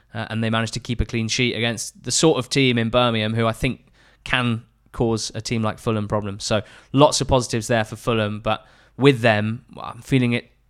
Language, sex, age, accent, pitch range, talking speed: English, male, 20-39, British, 105-130 Hz, 225 wpm